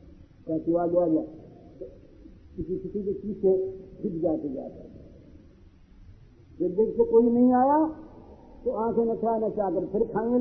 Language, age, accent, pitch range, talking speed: Hindi, 50-69, native, 185-265 Hz, 110 wpm